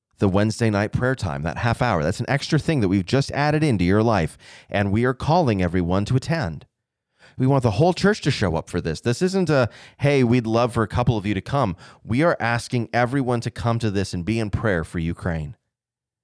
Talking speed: 235 wpm